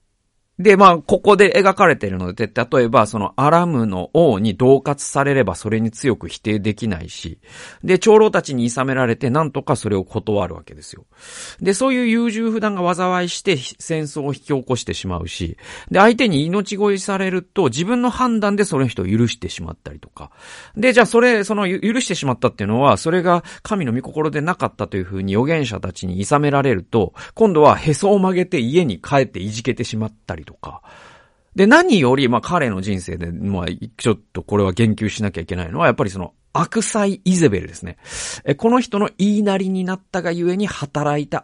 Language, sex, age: Japanese, male, 40-59